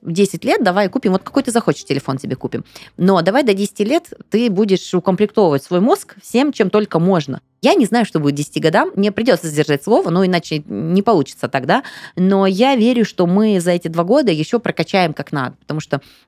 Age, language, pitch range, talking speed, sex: 20-39, Russian, 160-215 Hz, 205 wpm, female